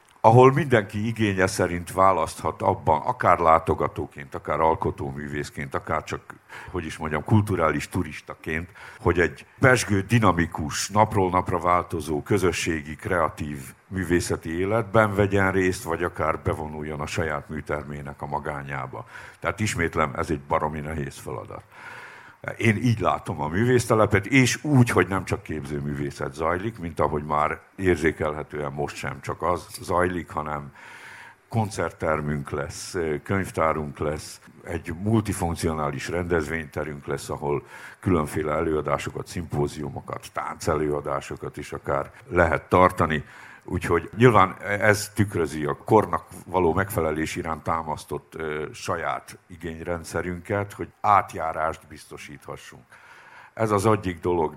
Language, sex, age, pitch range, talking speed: Hungarian, male, 60-79, 75-100 Hz, 115 wpm